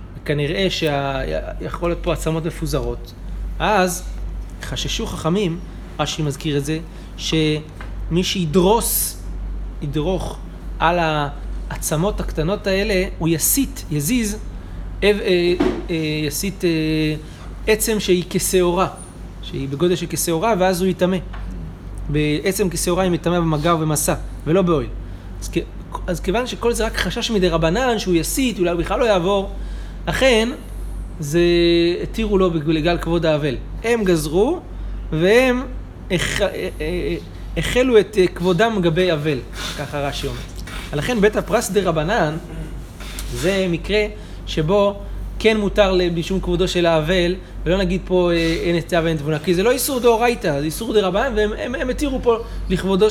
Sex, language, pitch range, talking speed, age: male, Hebrew, 150-195 Hz, 130 wpm, 30-49